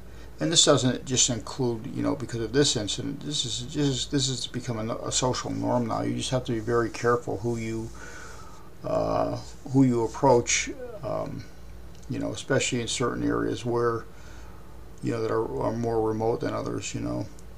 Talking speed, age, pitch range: 180 wpm, 50-69, 110-130 Hz